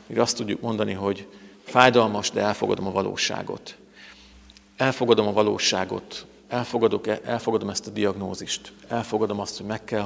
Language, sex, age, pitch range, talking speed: Hungarian, male, 50-69, 100-120 Hz, 135 wpm